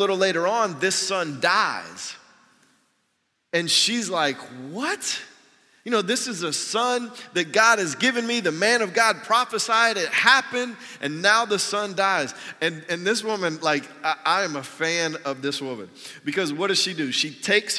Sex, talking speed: male, 180 wpm